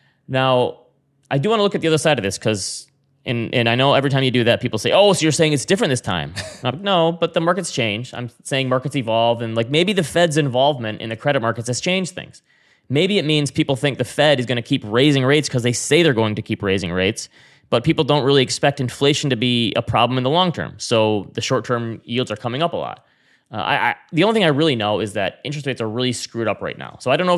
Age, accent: 20-39, American